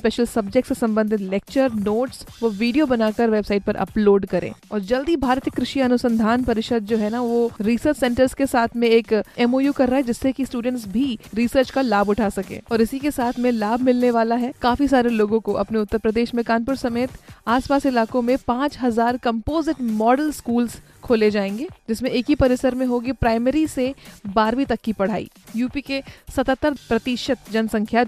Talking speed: 185 wpm